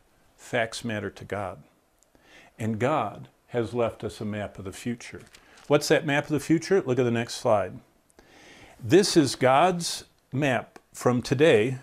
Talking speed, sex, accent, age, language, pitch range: 155 wpm, male, American, 50-69, English, 120-150 Hz